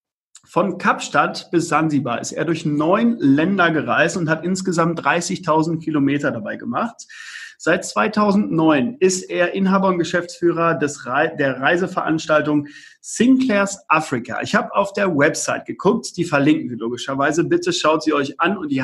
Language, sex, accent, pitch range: German, male, German, 160-235 Hz